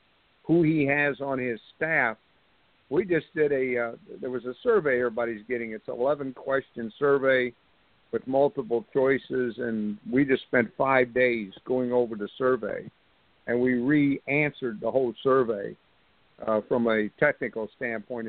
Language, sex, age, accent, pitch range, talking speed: English, male, 50-69, American, 115-135 Hz, 150 wpm